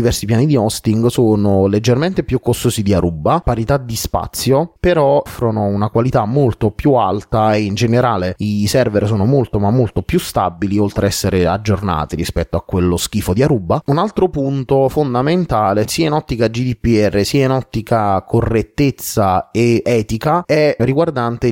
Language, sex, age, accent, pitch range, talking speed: Italian, male, 30-49, native, 100-130 Hz, 160 wpm